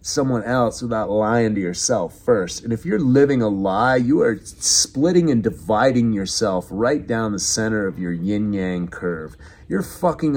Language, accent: English, American